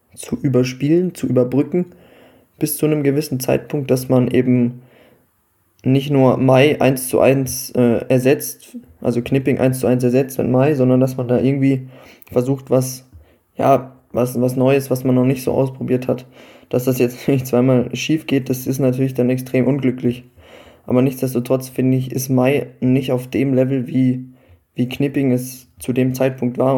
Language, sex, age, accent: German, male, 20-39, German